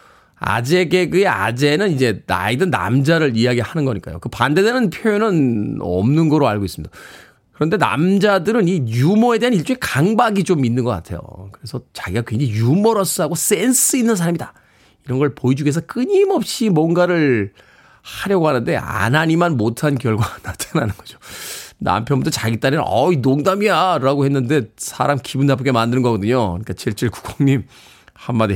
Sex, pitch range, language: male, 115-190 Hz, Korean